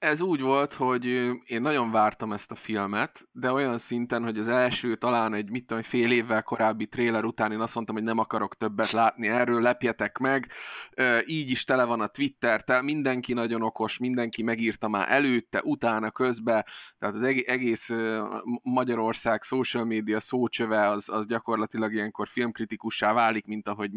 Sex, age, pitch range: male, 20-39, 110-125 Hz